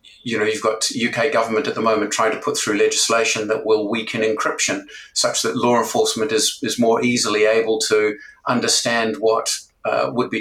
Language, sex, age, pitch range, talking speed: English, male, 50-69, 110-135 Hz, 185 wpm